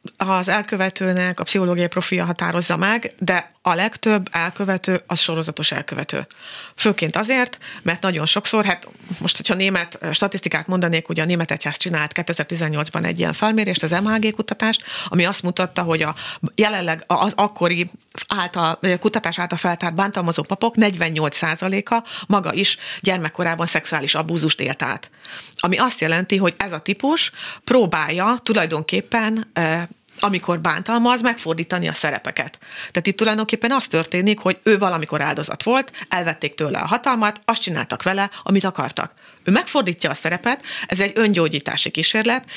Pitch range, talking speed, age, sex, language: 165-215 Hz, 140 wpm, 30-49, female, Hungarian